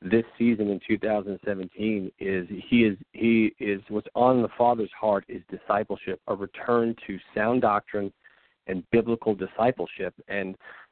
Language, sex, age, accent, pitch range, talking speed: English, male, 40-59, American, 100-120 Hz, 135 wpm